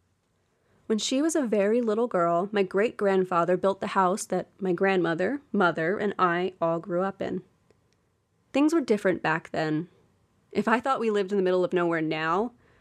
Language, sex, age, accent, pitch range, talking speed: English, female, 30-49, American, 170-210 Hz, 180 wpm